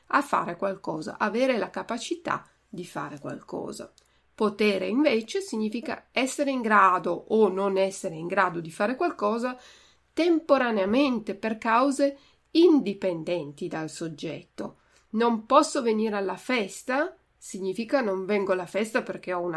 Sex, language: female, Italian